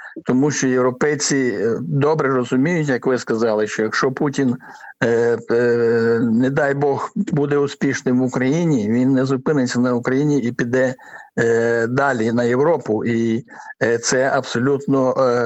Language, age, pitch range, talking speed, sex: Ukrainian, 60-79, 120-140 Hz, 120 wpm, male